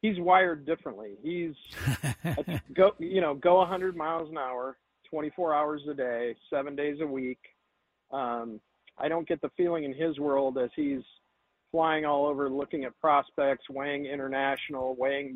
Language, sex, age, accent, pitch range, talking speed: English, male, 50-69, American, 135-160 Hz, 155 wpm